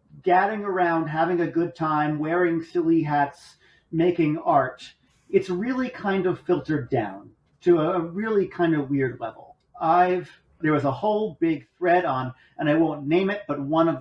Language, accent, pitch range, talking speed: English, American, 145-200 Hz, 170 wpm